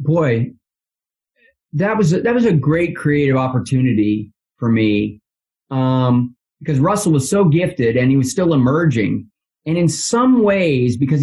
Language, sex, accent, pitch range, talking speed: English, male, American, 115-155 Hz, 150 wpm